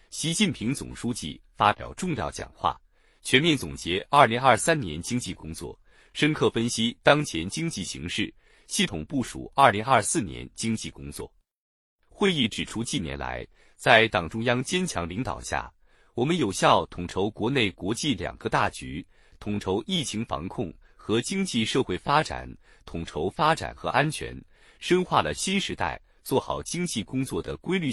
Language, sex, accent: Chinese, male, native